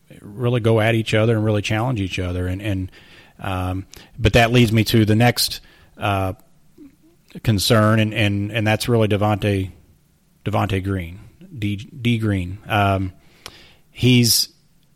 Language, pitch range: English, 100-120 Hz